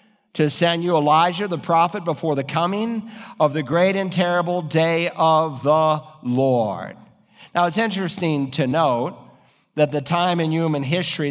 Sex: male